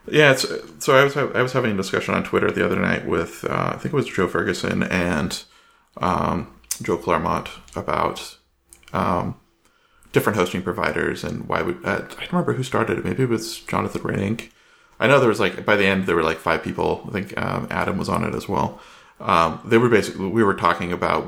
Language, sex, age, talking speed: English, male, 30-49, 215 wpm